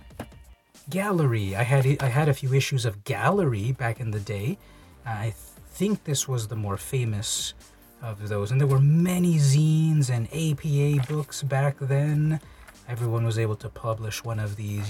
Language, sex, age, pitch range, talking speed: English, male, 30-49, 105-135 Hz, 165 wpm